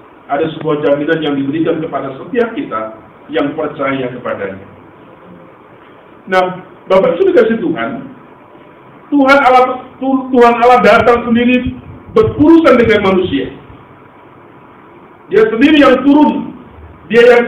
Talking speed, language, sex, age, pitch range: 105 wpm, Indonesian, male, 50-69, 190-245 Hz